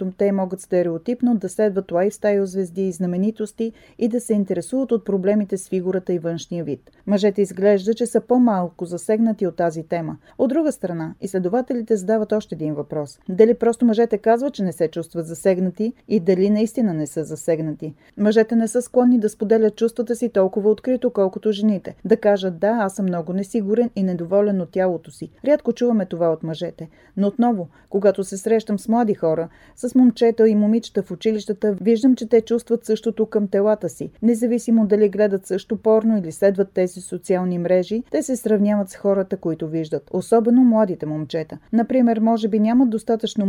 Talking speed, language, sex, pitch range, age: 175 wpm, Bulgarian, female, 185-230 Hz, 30-49